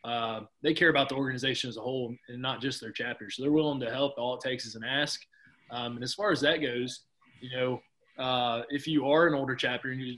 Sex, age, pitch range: male, 20-39, 125-145 Hz